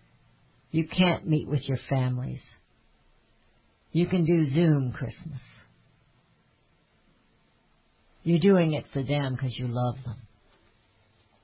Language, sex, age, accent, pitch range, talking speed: English, female, 60-79, American, 120-155 Hz, 105 wpm